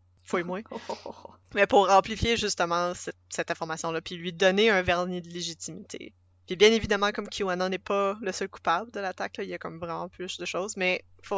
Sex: female